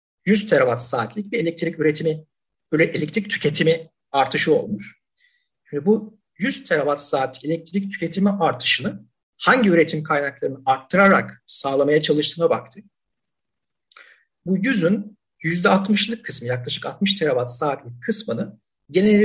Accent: native